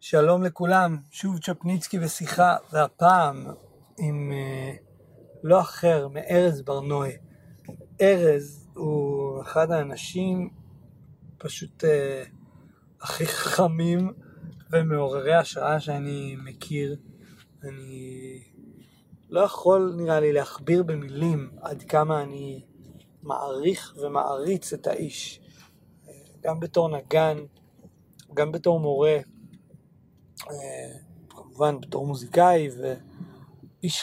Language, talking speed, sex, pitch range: Hebrew, 90 wpm, male, 140-165 Hz